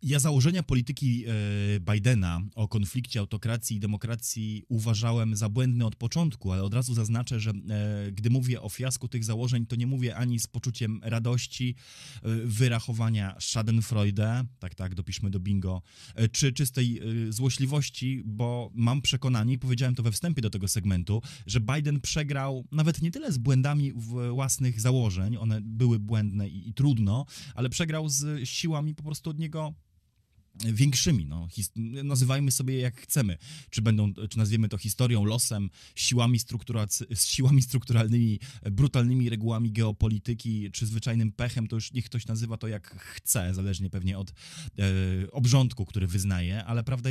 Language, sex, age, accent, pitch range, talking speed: Polish, male, 20-39, native, 105-130 Hz, 150 wpm